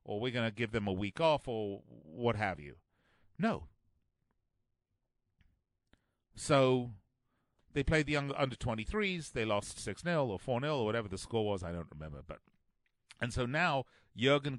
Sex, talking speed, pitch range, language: male, 150 wpm, 110-170 Hz, English